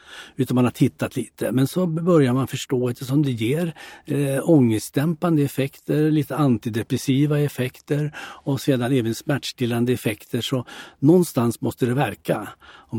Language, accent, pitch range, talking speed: Swedish, native, 110-140 Hz, 135 wpm